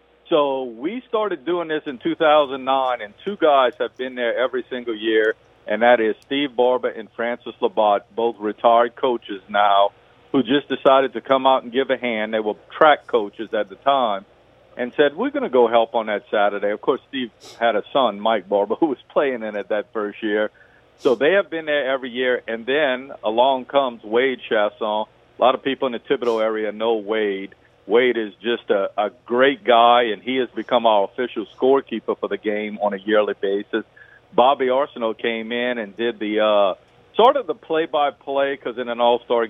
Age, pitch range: 50-69, 110-135 Hz